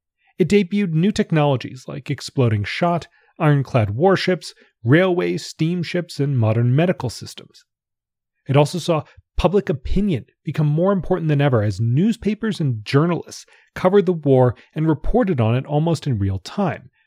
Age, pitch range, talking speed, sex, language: 30-49, 120-175 Hz, 140 wpm, male, English